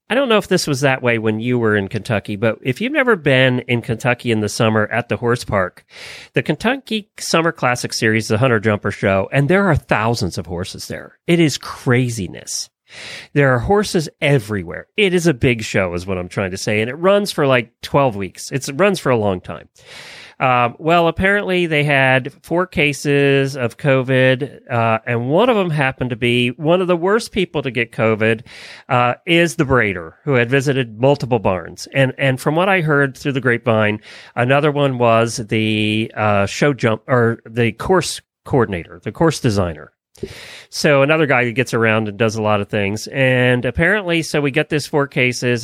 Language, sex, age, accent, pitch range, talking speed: English, male, 40-59, American, 115-145 Hz, 200 wpm